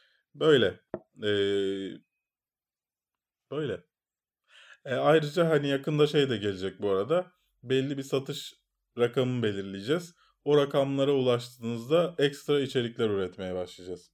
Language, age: Turkish, 30-49